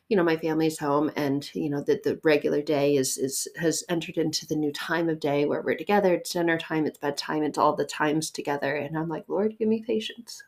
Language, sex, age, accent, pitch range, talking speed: English, female, 20-39, American, 150-195 Hz, 240 wpm